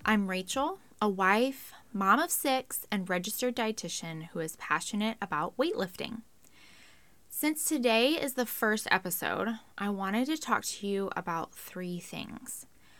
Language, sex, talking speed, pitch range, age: English, female, 140 wpm, 190-255 Hz, 10-29